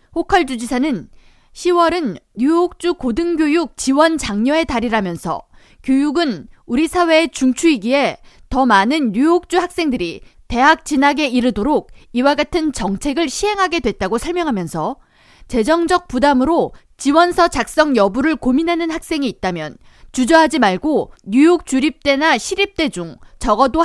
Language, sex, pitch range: Korean, female, 245-340 Hz